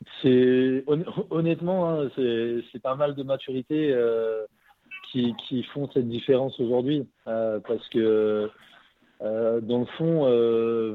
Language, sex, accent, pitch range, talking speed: French, male, French, 115-135 Hz, 130 wpm